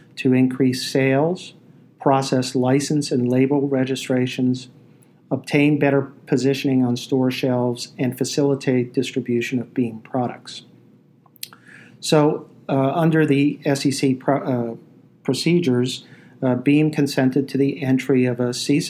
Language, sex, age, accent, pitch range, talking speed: English, male, 50-69, American, 125-140 Hz, 115 wpm